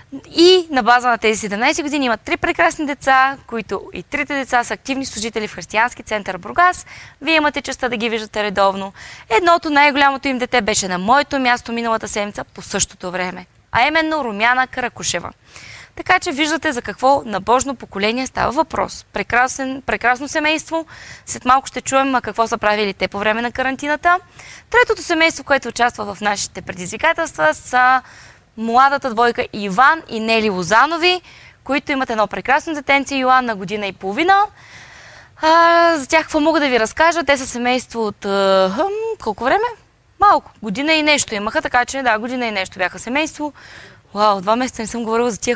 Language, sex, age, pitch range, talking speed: Bulgarian, female, 20-39, 220-295 Hz, 170 wpm